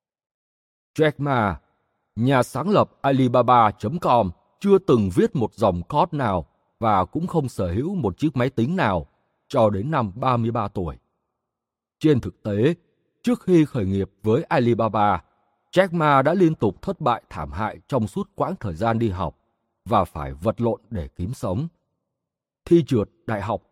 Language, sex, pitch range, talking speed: Vietnamese, male, 95-150 Hz, 160 wpm